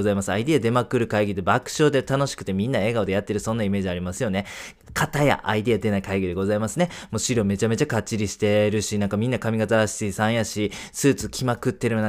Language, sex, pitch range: Japanese, male, 105-145 Hz